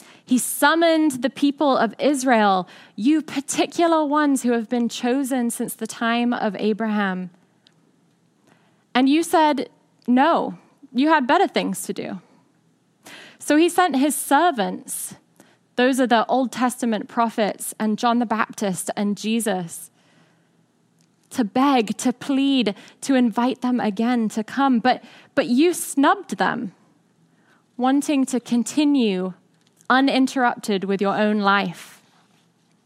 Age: 10-29